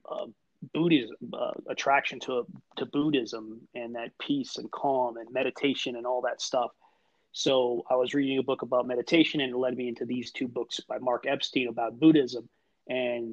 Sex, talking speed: male, 180 wpm